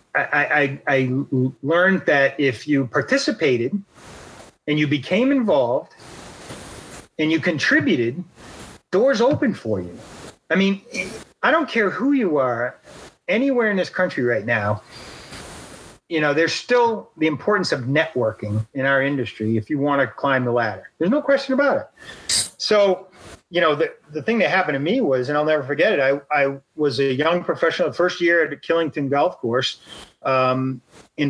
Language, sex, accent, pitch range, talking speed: English, male, American, 135-170 Hz, 165 wpm